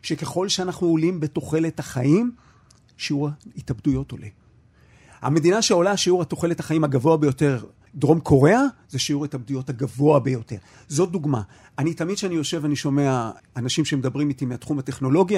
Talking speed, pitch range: 135 wpm, 135-170 Hz